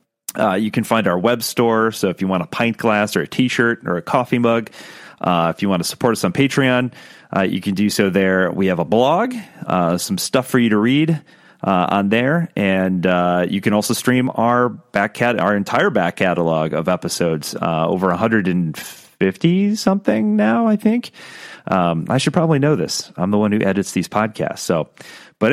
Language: English